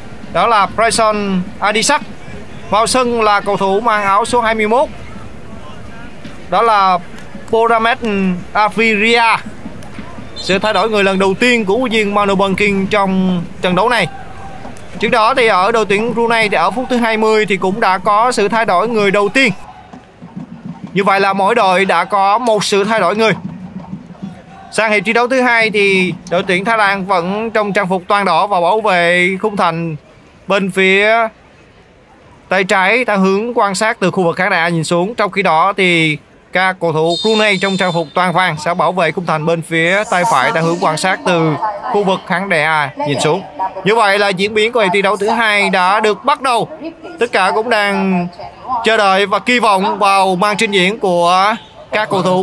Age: 20-39